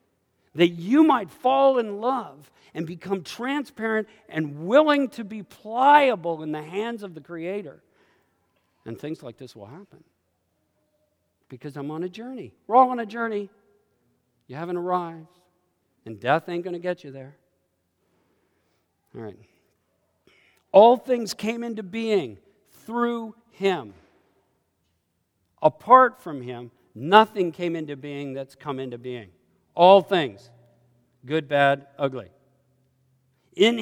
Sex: male